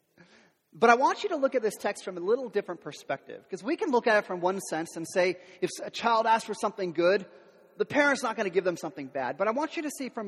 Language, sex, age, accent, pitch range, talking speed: English, male, 30-49, American, 195-300 Hz, 280 wpm